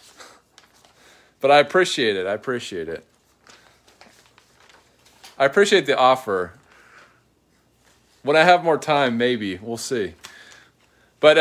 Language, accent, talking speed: English, American, 105 wpm